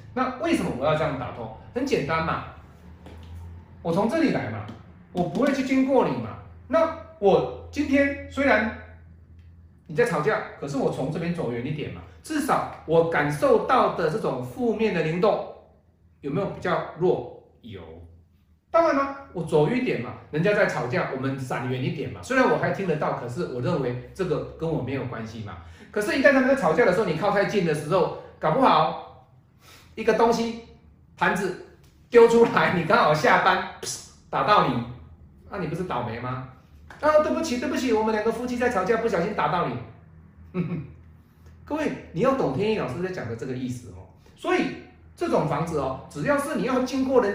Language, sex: Chinese, male